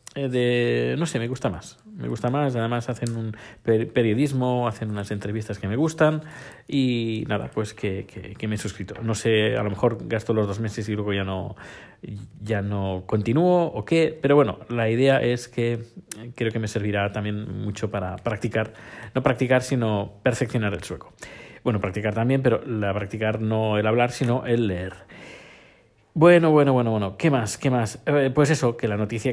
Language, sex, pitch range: Spanish, male, 105-130 Hz